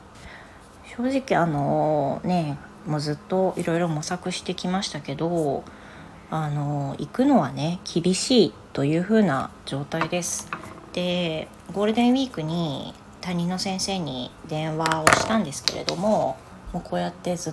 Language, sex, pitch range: Japanese, female, 155-195 Hz